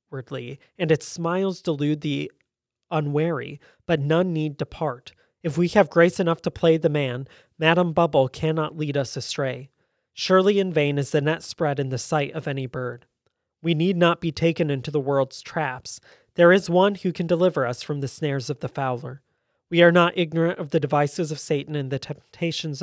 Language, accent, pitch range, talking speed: English, American, 140-170 Hz, 190 wpm